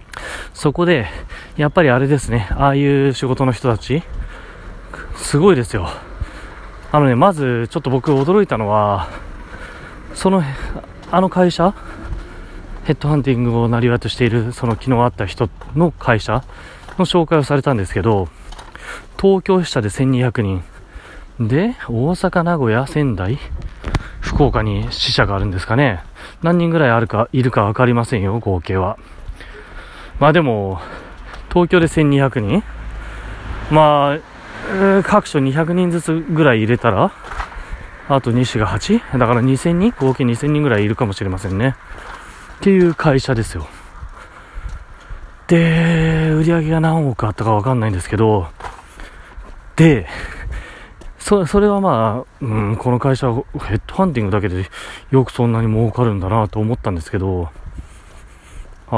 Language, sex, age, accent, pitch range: Japanese, male, 30-49, native, 105-150 Hz